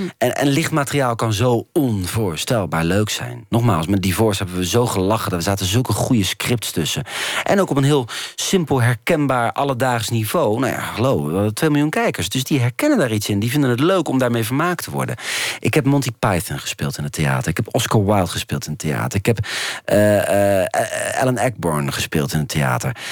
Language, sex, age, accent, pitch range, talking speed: Dutch, male, 40-59, Dutch, 105-145 Hz, 210 wpm